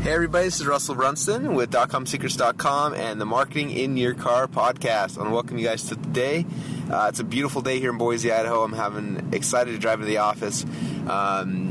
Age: 20-39